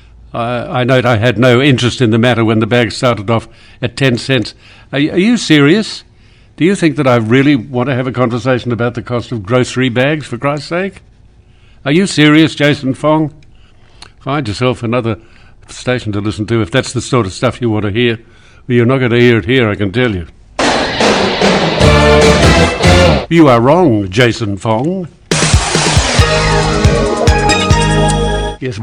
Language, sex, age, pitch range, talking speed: English, male, 60-79, 115-140 Hz, 165 wpm